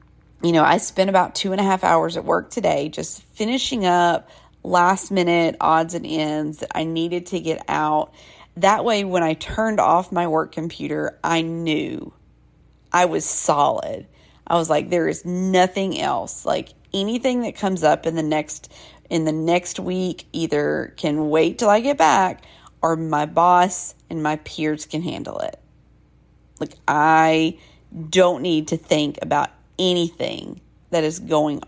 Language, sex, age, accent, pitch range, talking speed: English, female, 40-59, American, 155-190 Hz, 165 wpm